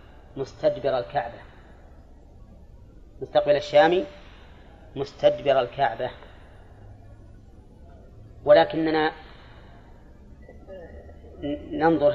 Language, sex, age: Arabic, female, 30-49